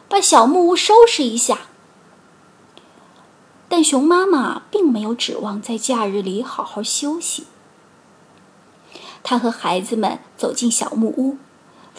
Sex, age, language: female, 20-39, Chinese